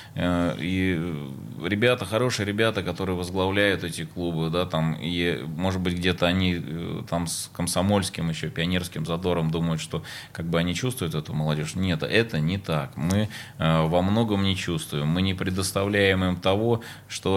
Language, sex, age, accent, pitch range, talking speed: Russian, male, 20-39, native, 85-100 Hz, 135 wpm